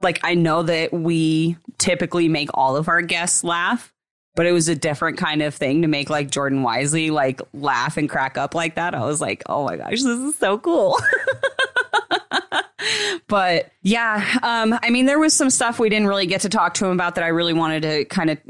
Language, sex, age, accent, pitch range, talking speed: English, female, 20-39, American, 140-175 Hz, 215 wpm